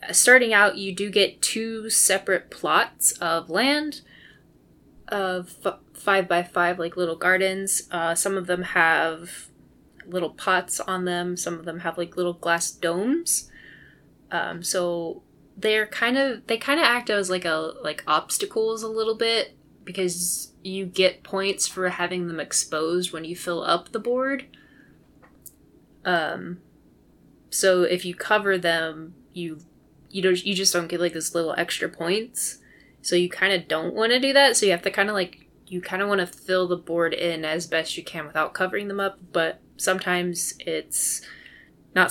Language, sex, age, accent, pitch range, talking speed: English, female, 20-39, American, 170-200 Hz, 170 wpm